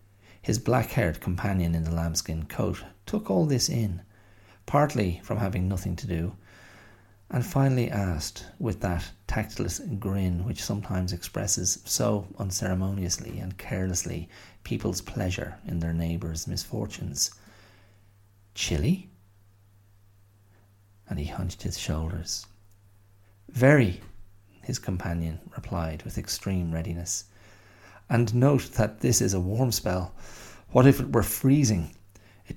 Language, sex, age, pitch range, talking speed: English, male, 40-59, 95-110 Hz, 120 wpm